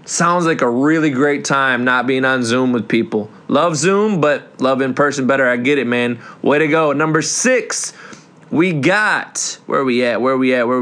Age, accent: 20-39, American